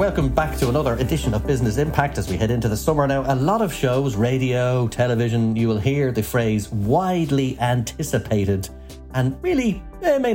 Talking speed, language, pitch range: 185 wpm, English, 110-140 Hz